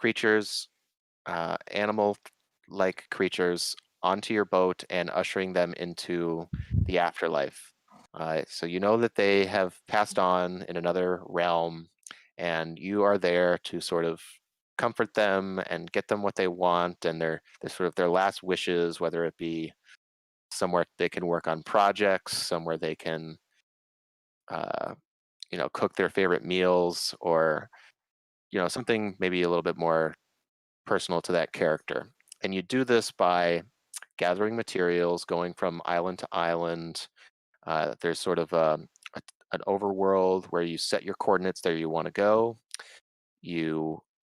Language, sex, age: English, male, 30-49